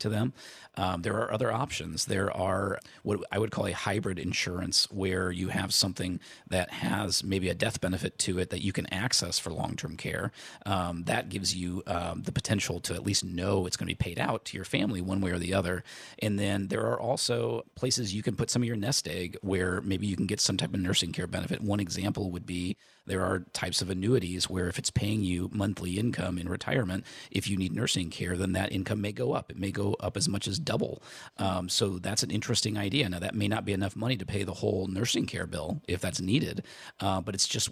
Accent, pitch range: American, 90-105 Hz